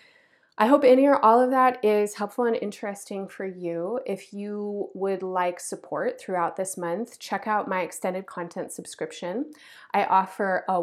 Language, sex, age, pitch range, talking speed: English, female, 20-39, 180-215 Hz, 165 wpm